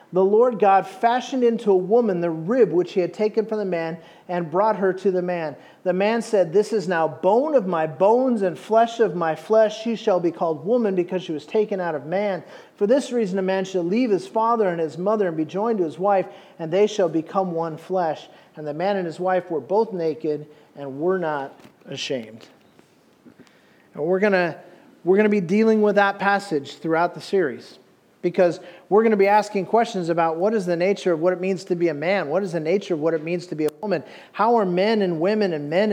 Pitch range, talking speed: 175-210 Hz, 230 wpm